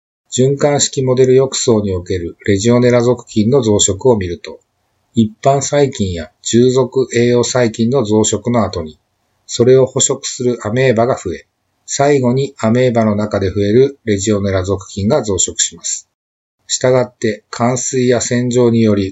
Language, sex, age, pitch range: Japanese, male, 50-69, 100-125 Hz